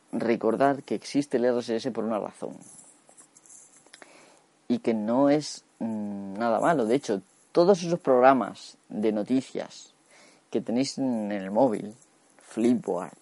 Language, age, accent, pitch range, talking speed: Spanish, 30-49, Spanish, 115-160 Hz, 125 wpm